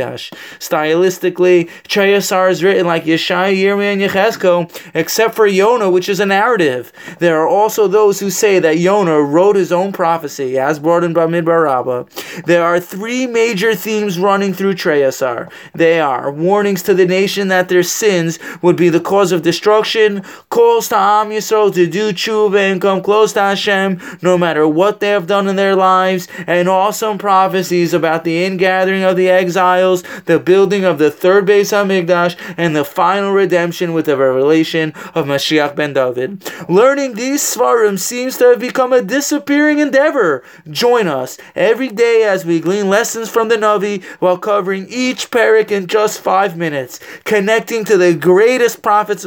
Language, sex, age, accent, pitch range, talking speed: English, male, 20-39, American, 175-215 Hz, 170 wpm